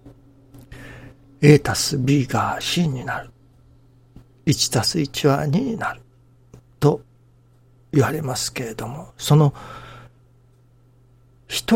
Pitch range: 120-145 Hz